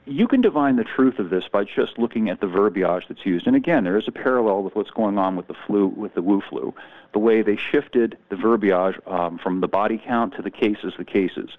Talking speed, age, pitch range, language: 250 wpm, 40-59, 100-120 Hz, English